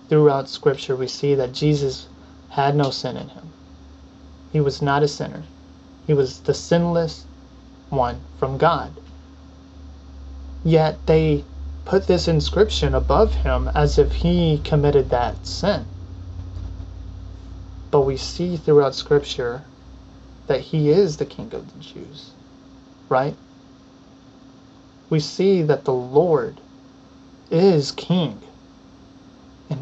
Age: 30-49